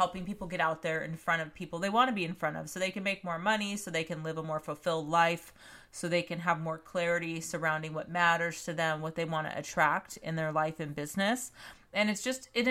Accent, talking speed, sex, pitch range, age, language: American, 260 wpm, female, 165-200 Hz, 30-49, English